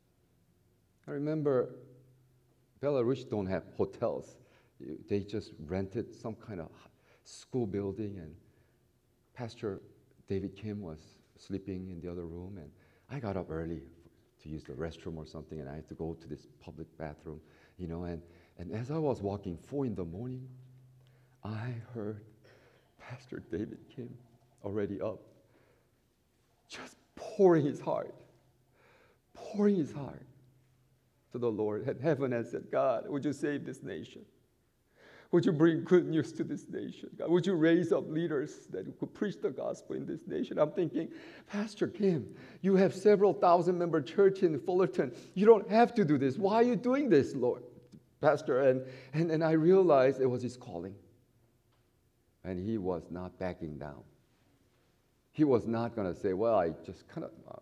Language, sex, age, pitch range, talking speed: English, male, 50-69, 95-150 Hz, 160 wpm